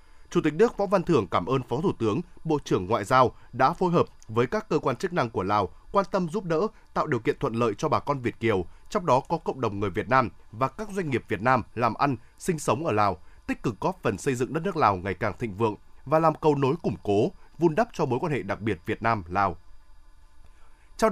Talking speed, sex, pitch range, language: 260 wpm, male, 110-170 Hz, Vietnamese